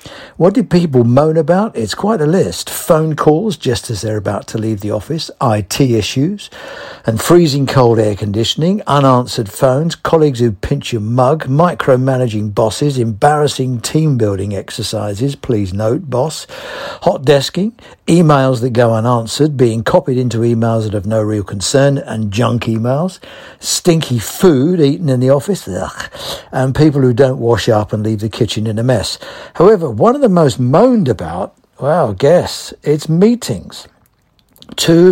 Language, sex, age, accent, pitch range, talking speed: English, male, 60-79, British, 110-155 Hz, 155 wpm